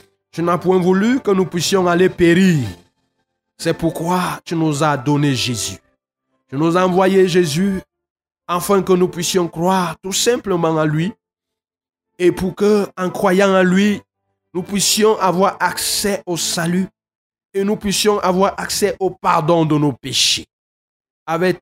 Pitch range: 165-215 Hz